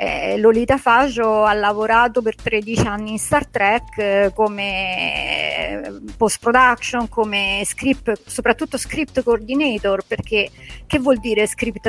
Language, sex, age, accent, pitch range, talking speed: Italian, female, 50-69, native, 205-275 Hz, 115 wpm